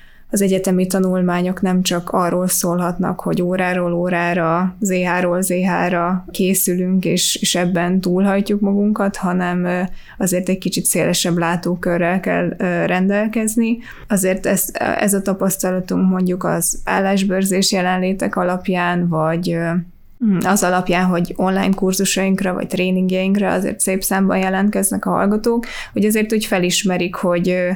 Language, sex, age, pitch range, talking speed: Hungarian, female, 20-39, 180-200 Hz, 120 wpm